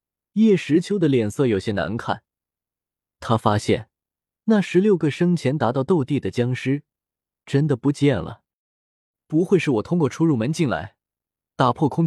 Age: 20-39